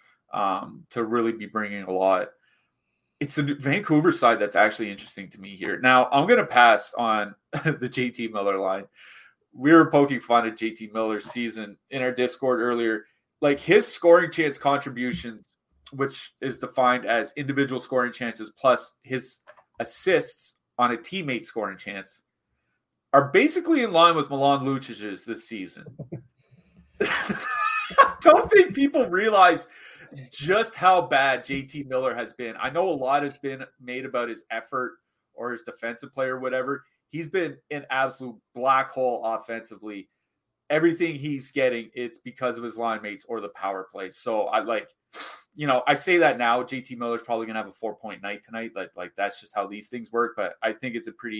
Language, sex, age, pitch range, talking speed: English, male, 30-49, 110-140 Hz, 175 wpm